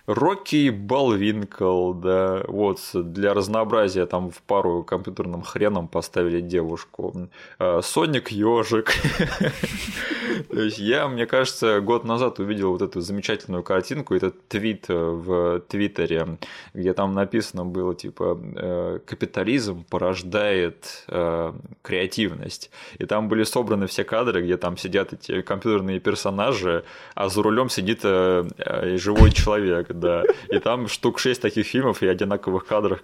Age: 20-39